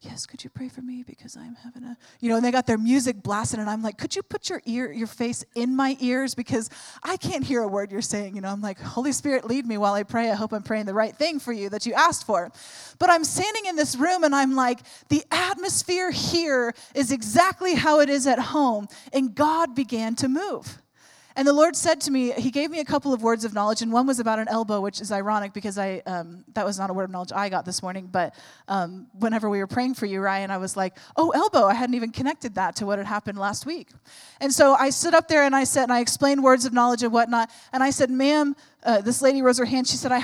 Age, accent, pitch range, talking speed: 20-39, American, 220-280 Hz, 270 wpm